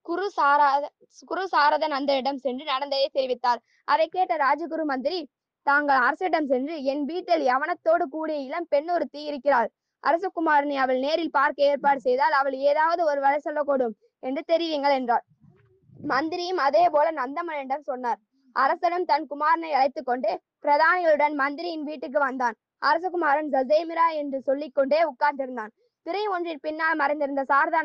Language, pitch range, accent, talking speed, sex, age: Tamil, 270-320 Hz, native, 125 wpm, female, 20-39